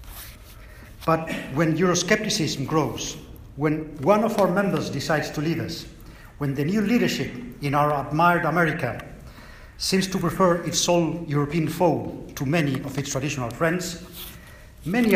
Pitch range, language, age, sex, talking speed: 135-170 Hz, English, 50-69, male, 140 wpm